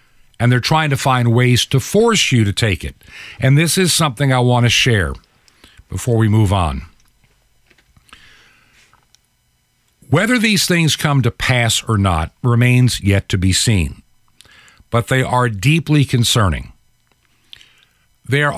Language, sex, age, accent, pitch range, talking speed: English, male, 50-69, American, 115-165 Hz, 140 wpm